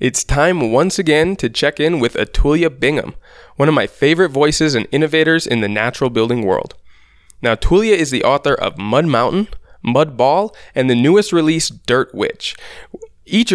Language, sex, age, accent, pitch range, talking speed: English, male, 20-39, American, 115-165 Hz, 175 wpm